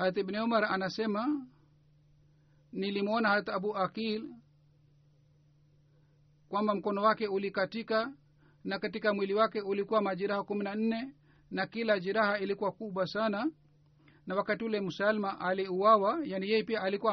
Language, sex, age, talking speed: Swahili, male, 50-69, 120 wpm